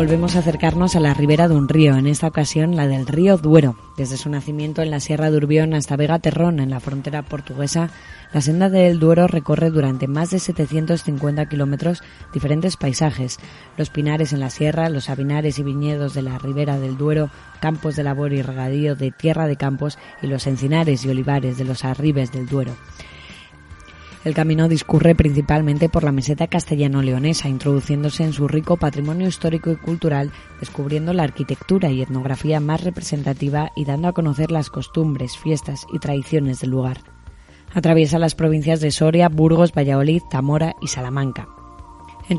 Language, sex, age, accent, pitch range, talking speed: Spanish, female, 20-39, Spanish, 135-160 Hz, 175 wpm